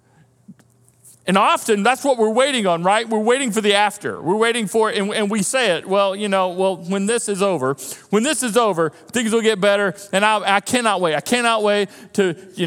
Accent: American